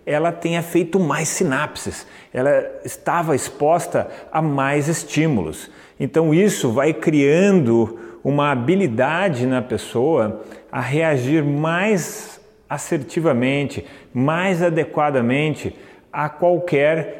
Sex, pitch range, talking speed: male, 120-160 Hz, 95 wpm